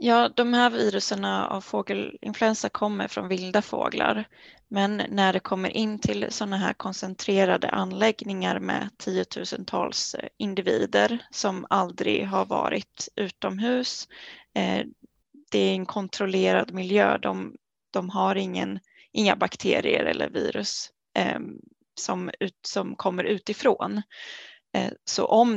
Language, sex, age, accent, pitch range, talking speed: Swedish, female, 20-39, native, 190-220 Hz, 110 wpm